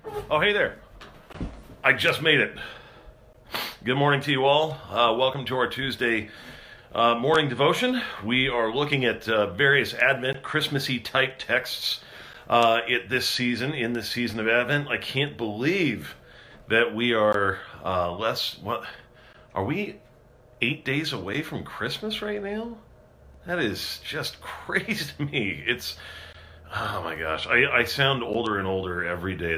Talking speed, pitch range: 150 wpm, 110-140 Hz